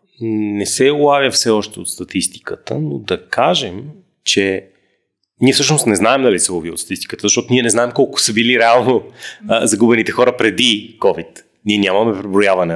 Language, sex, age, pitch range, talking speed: Bulgarian, male, 30-49, 100-135 Hz, 170 wpm